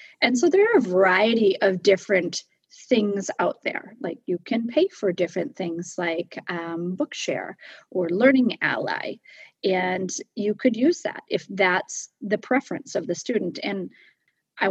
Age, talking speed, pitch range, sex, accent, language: 30-49, 155 wpm, 190-255 Hz, female, American, English